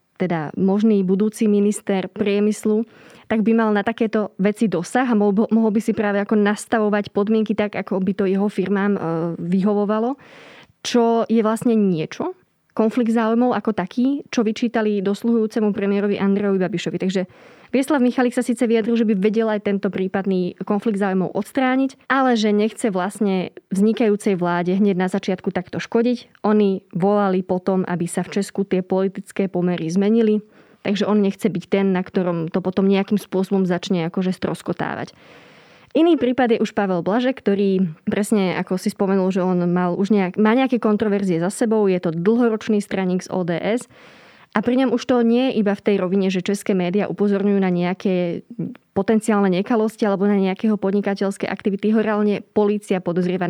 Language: Slovak